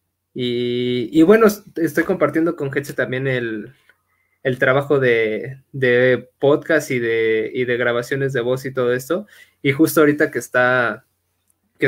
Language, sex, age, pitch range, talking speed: Spanish, male, 20-39, 125-150 Hz, 150 wpm